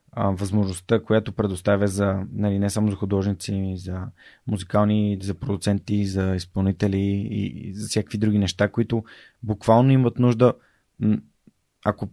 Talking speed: 125 wpm